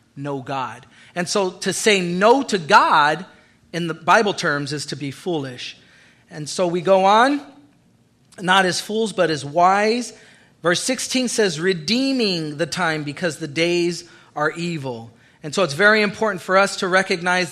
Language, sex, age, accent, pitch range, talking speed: English, male, 40-59, American, 160-210 Hz, 165 wpm